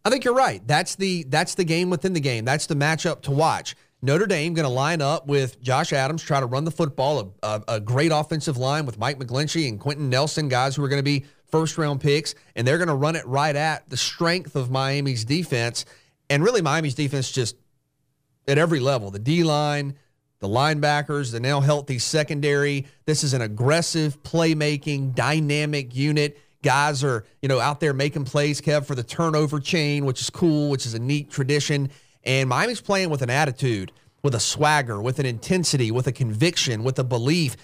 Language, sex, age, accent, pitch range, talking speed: English, male, 30-49, American, 130-155 Hz, 200 wpm